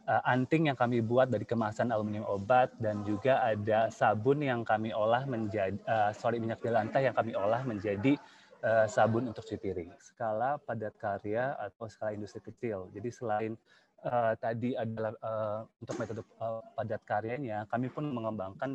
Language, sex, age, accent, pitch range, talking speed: Indonesian, male, 30-49, native, 105-120 Hz, 165 wpm